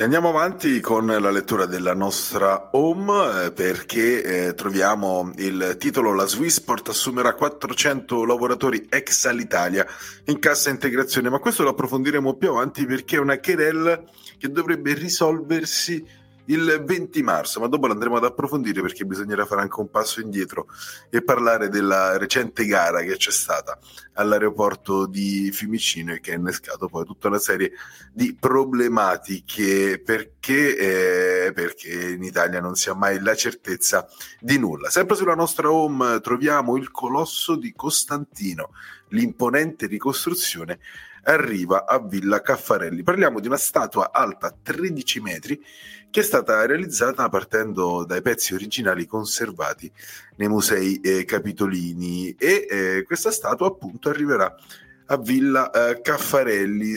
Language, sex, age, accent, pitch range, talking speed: Italian, male, 30-49, native, 95-150 Hz, 135 wpm